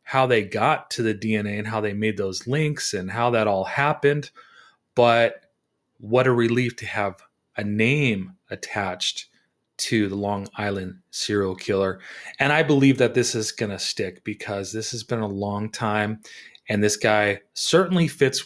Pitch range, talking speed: 105-125 Hz, 170 wpm